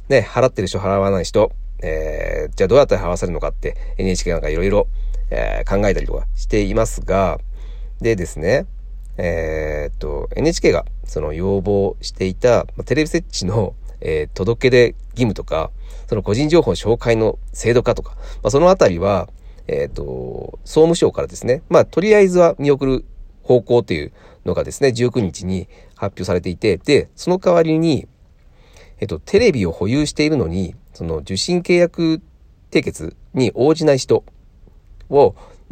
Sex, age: male, 40-59